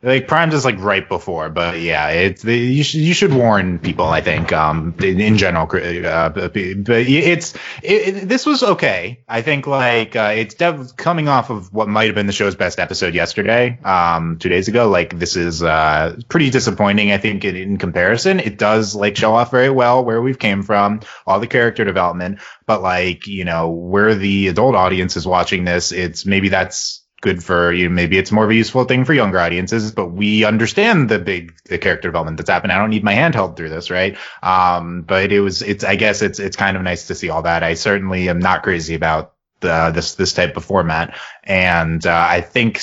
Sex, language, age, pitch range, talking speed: male, English, 20-39, 90-125 Hz, 220 wpm